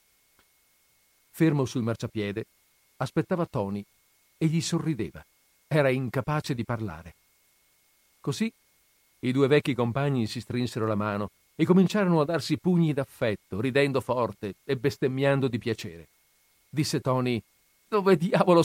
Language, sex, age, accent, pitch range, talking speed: Italian, male, 50-69, native, 110-150 Hz, 120 wpm